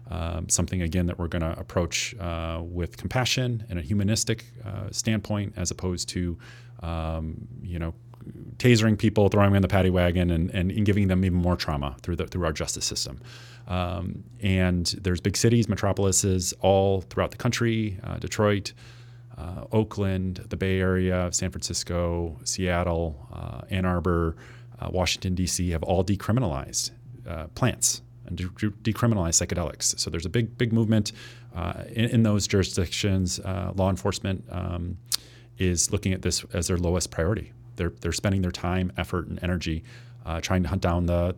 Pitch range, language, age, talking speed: 85-110 Hz, English, 30-49, 160 wpm